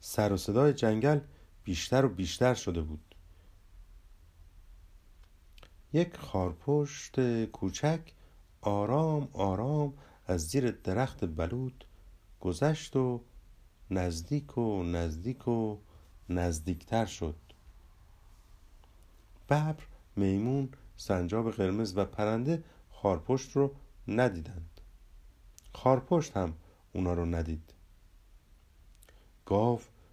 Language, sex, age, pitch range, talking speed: Persian, male, 50-69, 85-130 Hz, 80 wpm